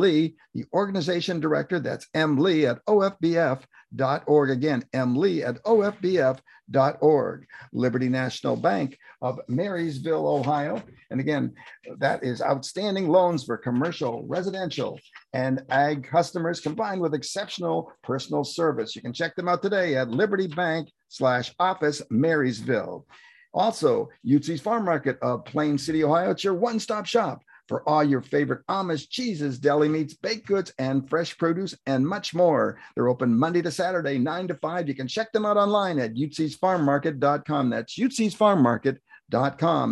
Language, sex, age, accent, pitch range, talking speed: English, male, 50-69, American, 140-185 Hz, 145 wpm